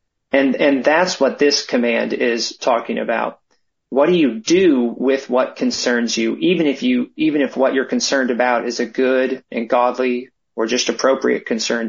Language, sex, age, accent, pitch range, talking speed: English, male, 30-49, American, 120-145 Hz, 175 wpm